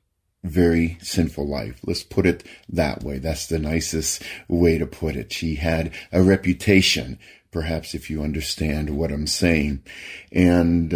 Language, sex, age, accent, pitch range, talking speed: Ukrainian, male, 50-69, American, 80-105 Hz, 150 wpm